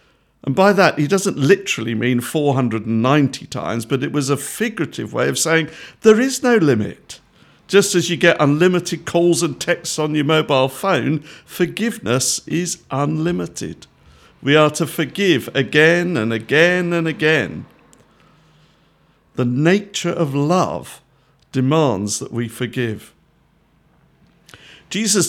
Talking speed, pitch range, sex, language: 130 wpm, 130-170 Hz, male, English